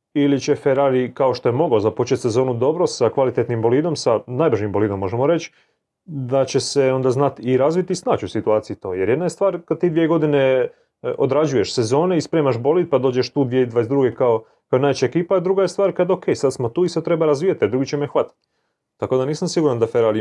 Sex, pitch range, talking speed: male, 110-145 Hz, 220 wpm